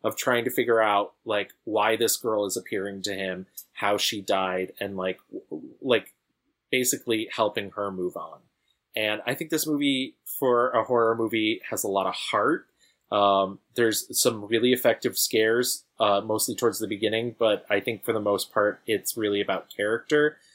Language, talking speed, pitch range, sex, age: English, 175 wpm, 110-145 Hz, male, 30-49